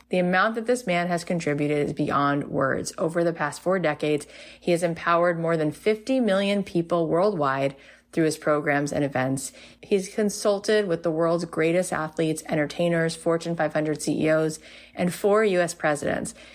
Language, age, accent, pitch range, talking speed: English, 30-49, American, 155-185 Hz, 160 wpm